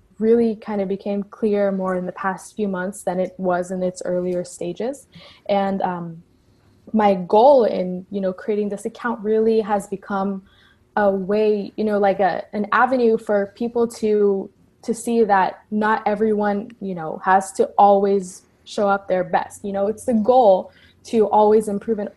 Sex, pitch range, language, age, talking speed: female, 190-220 Hz, English, 20-39, 175 wpm